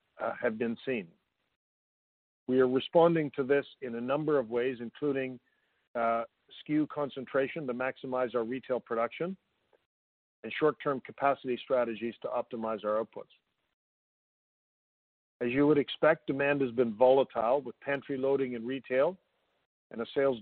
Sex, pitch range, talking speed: male, 120-140 Hz, 140 wpm